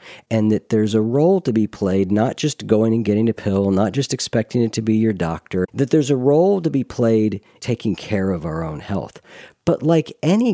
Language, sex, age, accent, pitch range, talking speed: English, male, 50-69, American, 95-135 Hz, 220 wpm